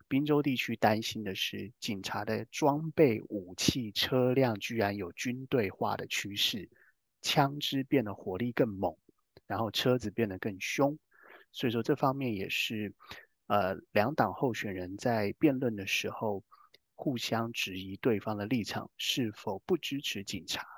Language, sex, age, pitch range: Chinese, male, 30-49, 105-135 Hz